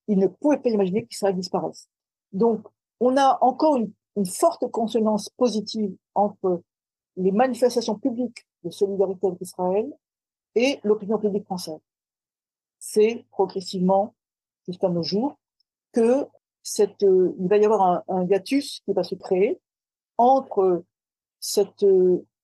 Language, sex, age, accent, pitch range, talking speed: French, female, 50-69, French, 185-230 Hz, 130 wpm